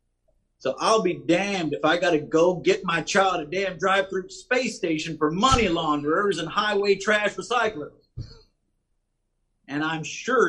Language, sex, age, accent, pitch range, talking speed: English, male, 50-69, American, 160-200 Hz, 155 wpm